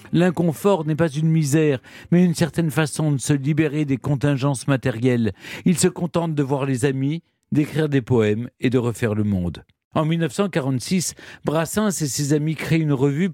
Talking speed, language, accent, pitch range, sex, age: 175 wpm, French, French, 130-175 Hz, male, 50-69